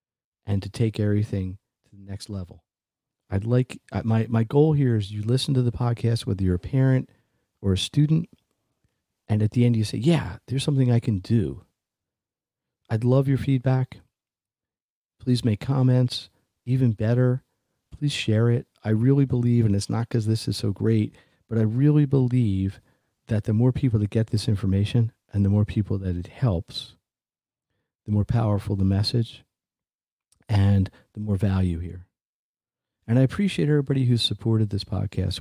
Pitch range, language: 100-125 Hz, English